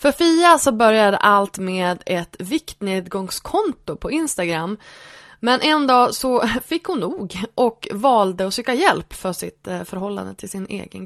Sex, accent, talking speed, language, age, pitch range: female, native, 150 wpm, Swedish, 20-39, 185-260 Hz